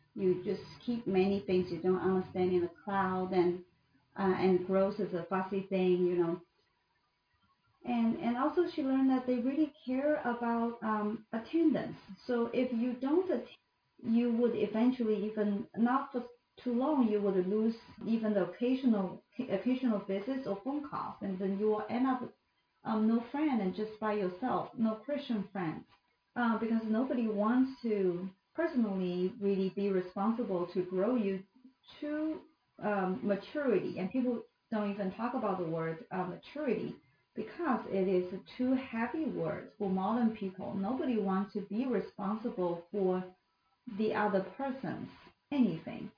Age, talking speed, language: 40-59, 155 wpm, English